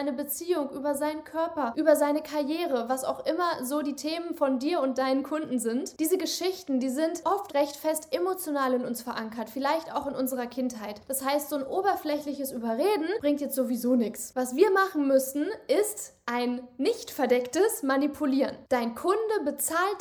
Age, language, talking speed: 10-29, German, 170 wpm